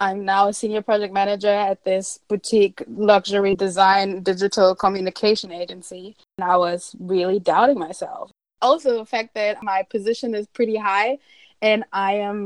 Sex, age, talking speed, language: female, 20-39, 155 wpm, English